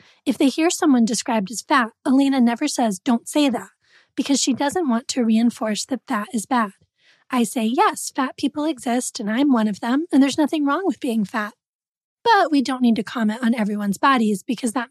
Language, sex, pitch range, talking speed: English, female, 220-270 Hz, 210 wpm